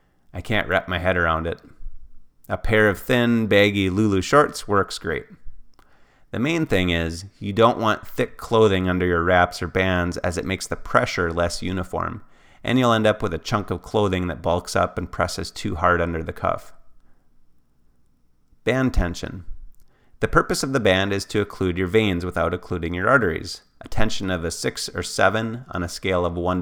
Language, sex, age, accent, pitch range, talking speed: English, male, 30-49, American, 85-110 Hz, 190 wpm